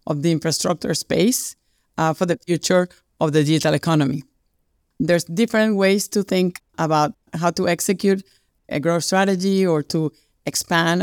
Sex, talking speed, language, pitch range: female, 145 wpm, English, 155-185 Hz